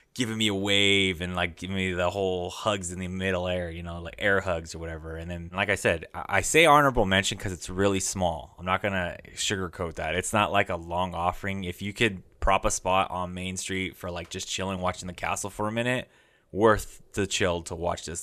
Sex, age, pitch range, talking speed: male, 20-39, 85-100 Hz, 235 wpm